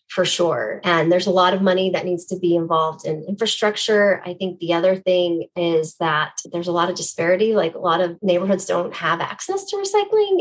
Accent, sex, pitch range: American, female, 180-215 Hz